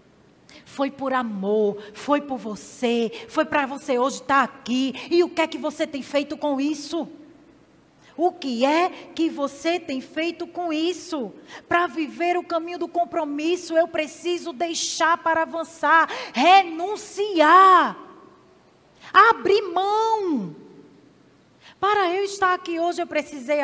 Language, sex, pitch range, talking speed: Portuguese, female, 255-335 Hz, 130 wpm